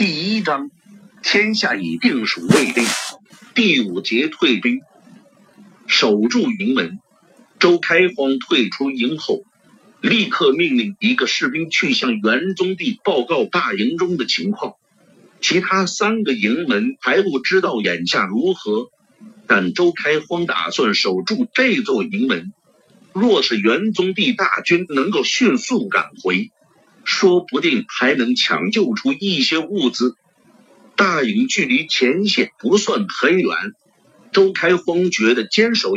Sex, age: male, 50-69